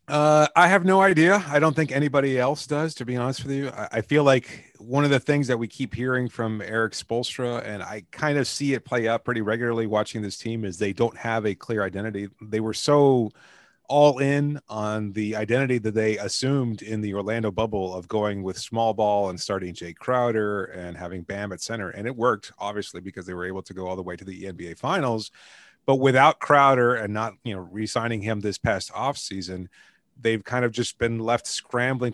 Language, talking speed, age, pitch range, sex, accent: English, 215 wpm, 30-49, 105-125 Hz, male, American